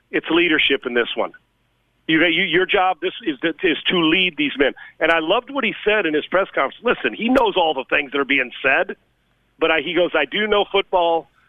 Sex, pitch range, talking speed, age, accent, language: male, 150-185 Hz, 230 wpm, 40-59, American, English